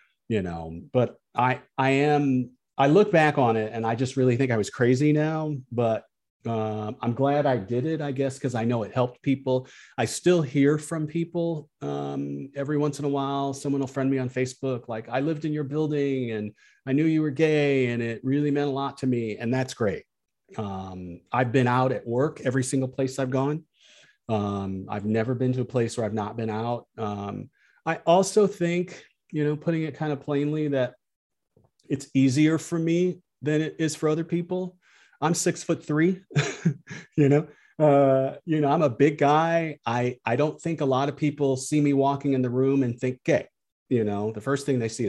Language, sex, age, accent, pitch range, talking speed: English, male, 40-59, American, 115-150 Hz, 210 wpm